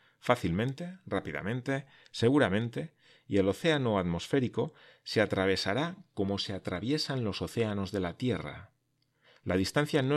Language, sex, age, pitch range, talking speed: Spanish, male, 40-59, 95-135 Hz, 120 wpm